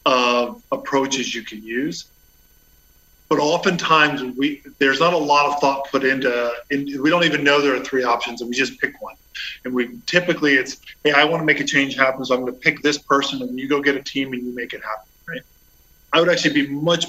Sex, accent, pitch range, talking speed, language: male, American, 125-155 Hz, 230 wpm, English